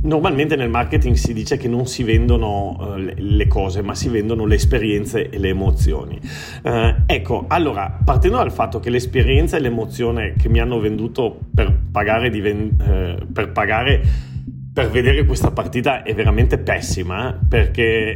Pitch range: 100-115 Hz